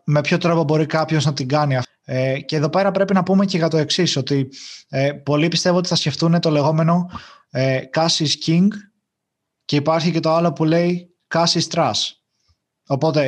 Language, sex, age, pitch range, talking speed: Greek, male, 20-39, 145-175 Hz, 185 wpm